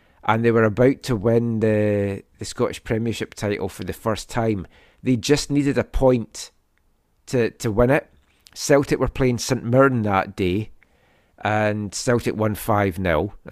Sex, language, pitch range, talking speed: male, English, 105-135 Hz, 155 wpm